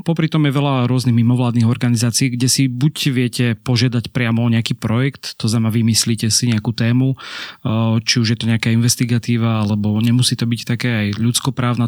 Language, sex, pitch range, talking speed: Slovak, male, 115-125 Hz, 175 wpm